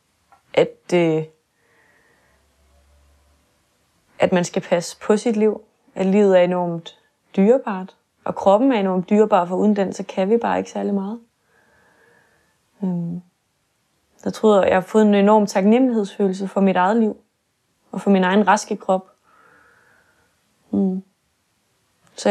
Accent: native